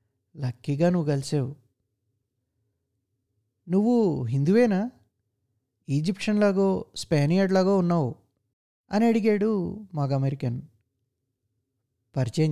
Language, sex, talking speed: Telugu, male, 70 wpm